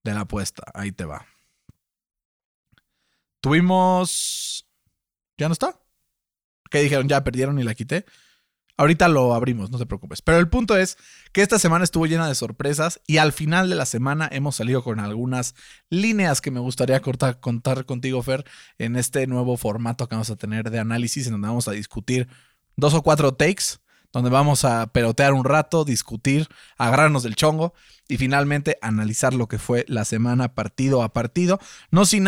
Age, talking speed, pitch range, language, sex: 20-39, 175 wpm, 125-155 Hz, Spanish, male